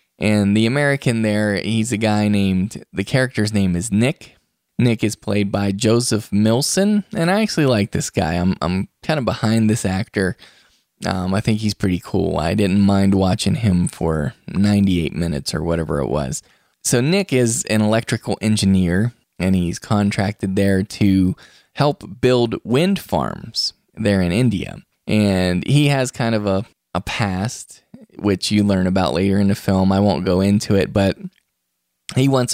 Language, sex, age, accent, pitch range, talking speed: English, male, 10-29, American, 95-115 Hz, 170 wpm